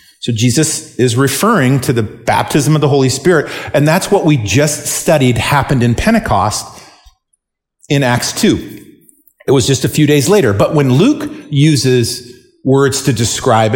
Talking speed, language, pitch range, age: 160 wpm, English, 130-160 Hz, 40-59